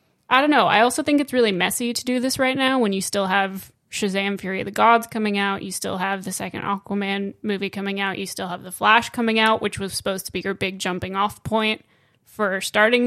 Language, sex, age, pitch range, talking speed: English, female, 20-39, 195-230 Hz, 245 wpm